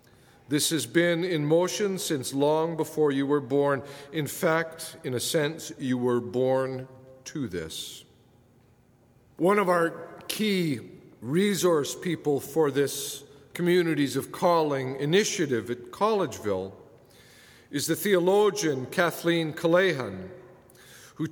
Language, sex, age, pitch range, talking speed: English, male, 50-69, 135-180 Hz, 115 wpm